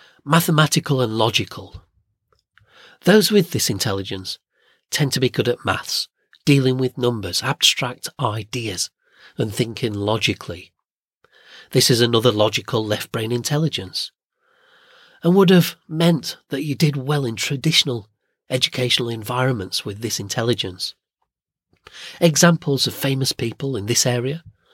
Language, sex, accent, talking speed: English, male, British, 120 wpm